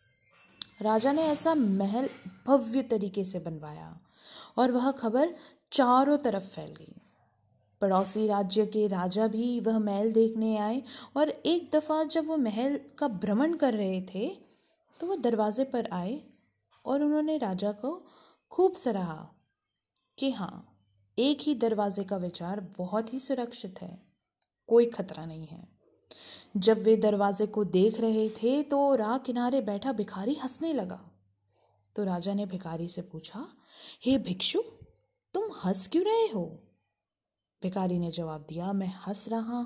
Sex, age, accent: female, 20-39, native